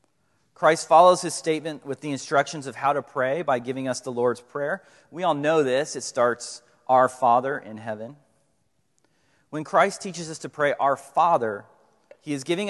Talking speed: 180 wpm